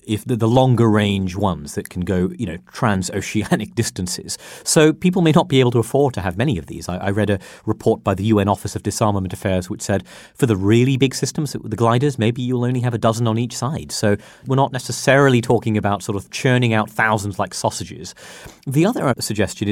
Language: English